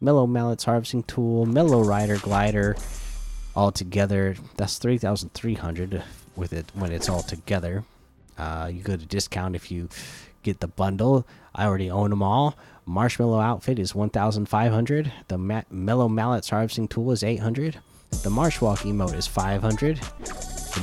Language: English